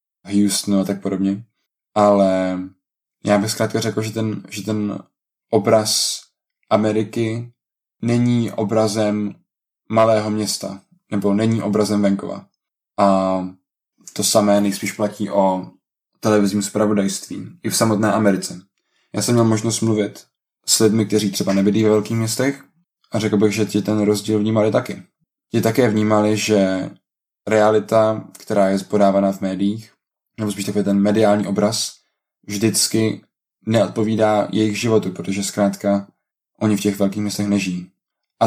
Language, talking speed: Czech, 135 wpm